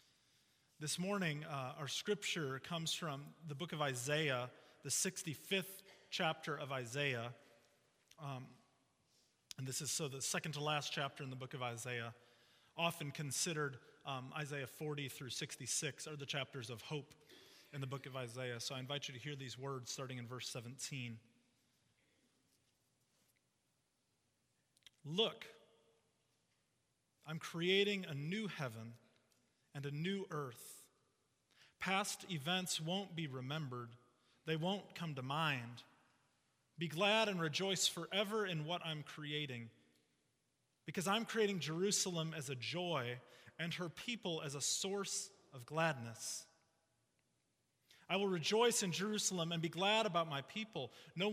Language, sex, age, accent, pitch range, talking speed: English, male, 30-49, American, 130-175 Hz, 135 wpm